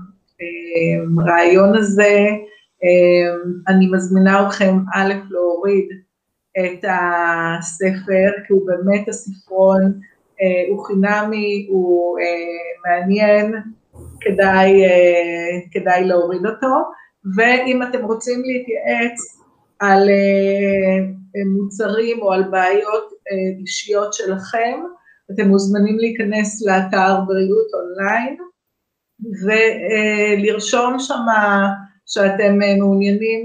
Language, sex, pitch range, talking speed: Hebrew, female, 190-215 Hz, 80 wpm